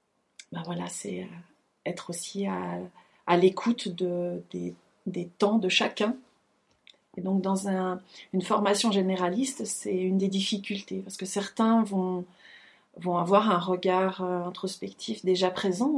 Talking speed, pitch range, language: 140 wpm, 185-225 Hz, French